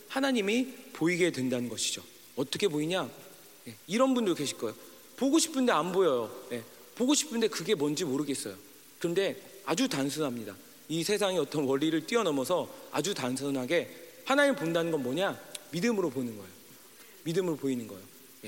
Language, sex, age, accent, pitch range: Korean, male, 40-59, native, 165-260 Hz